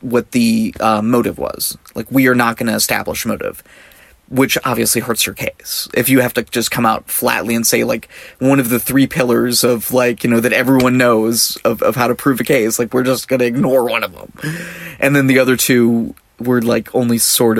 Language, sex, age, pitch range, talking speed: English, male, 20-39, 115-125 Hz, 225 wpm